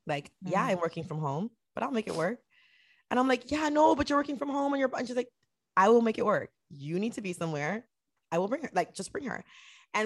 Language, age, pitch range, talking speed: English, 20-39, 150-210 Hz, 270 wpm